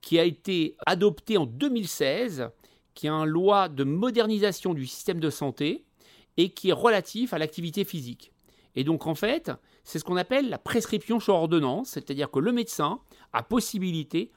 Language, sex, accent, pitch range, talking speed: French, male, French, 150-195 Hz, 170 wpm